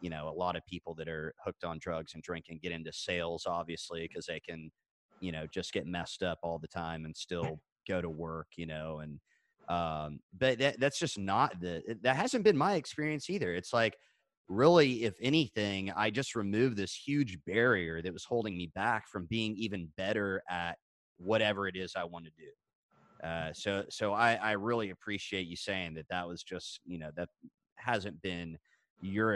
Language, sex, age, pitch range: English, male, 30-49, 85-115 Hz